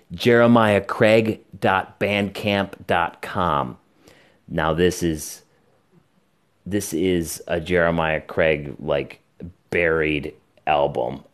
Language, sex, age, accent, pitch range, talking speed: English, male, 30-49, American, 85-105 Hz, 65 wpm